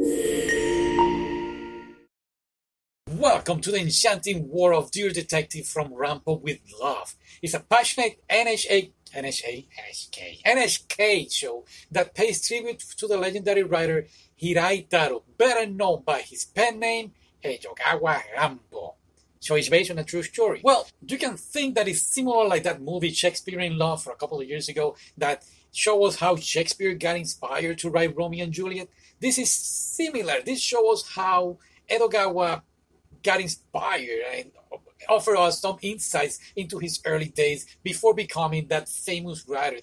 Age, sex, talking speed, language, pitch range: 40-59, male, 150 wpm, English, 165-230 Hz